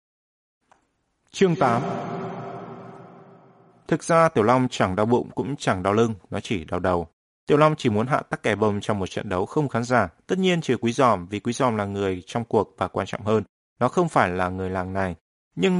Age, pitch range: 20-39, 100-135 Hz